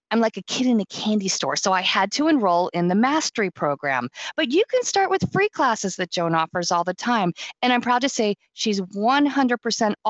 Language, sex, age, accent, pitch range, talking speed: English, female, 40-59, American, 170-245 Hz, 220 wpm